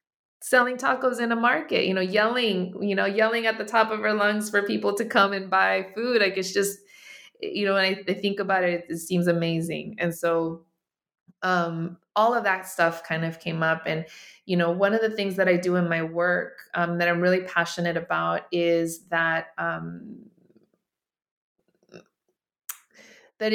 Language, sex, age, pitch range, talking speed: English, female, 20-39, 170-195 Hz, 180 wpm